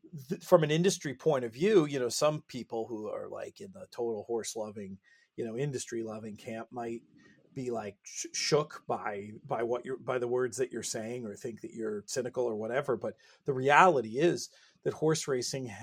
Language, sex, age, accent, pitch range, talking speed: English, male, 40-59, American, 130-175 Hz, 195 wpm